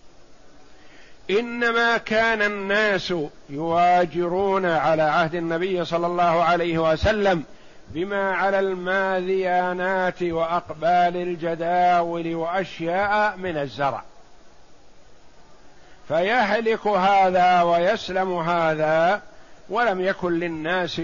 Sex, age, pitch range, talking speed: male, 60-79, 165-195 Hz, 75 wpm